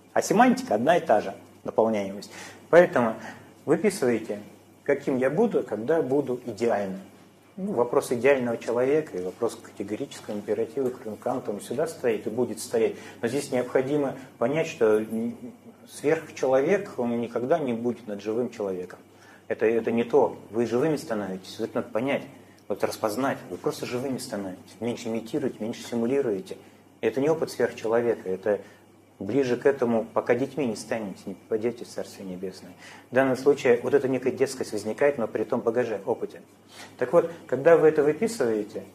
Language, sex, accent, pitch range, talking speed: Russian, male, native, 110-145 Hz, 155 wpm